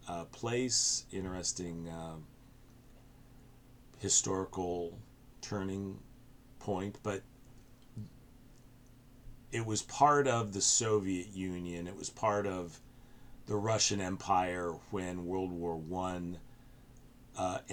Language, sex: English, male